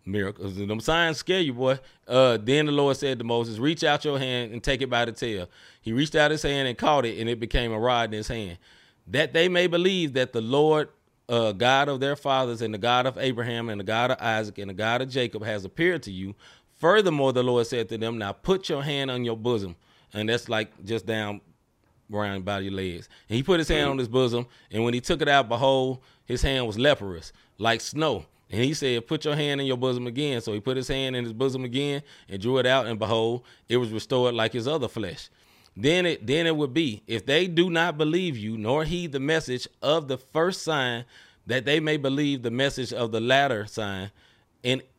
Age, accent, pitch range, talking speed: 30-49, American, 115-145 Hz, 235 wpm